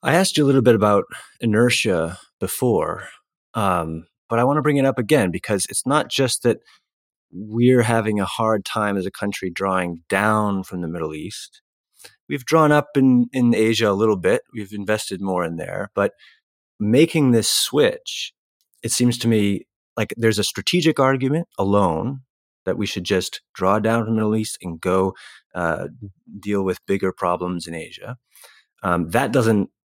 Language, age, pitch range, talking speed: English, 30-49, 95-125 Hz, 175 wpm